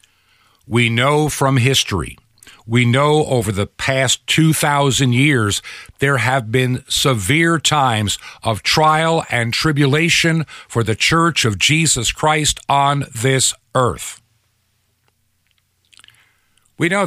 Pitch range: 110-145 Hz